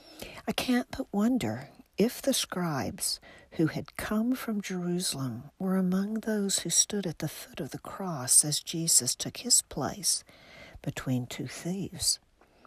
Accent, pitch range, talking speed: American, 130-185 Hz, 145 wpm